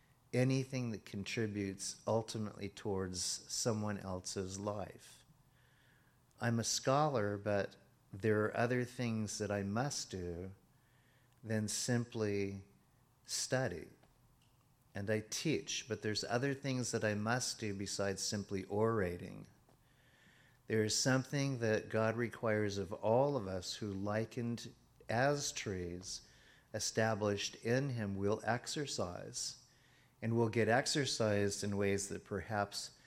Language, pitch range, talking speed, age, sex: English, 100-130 Hz, 115 wpm, 50-69, male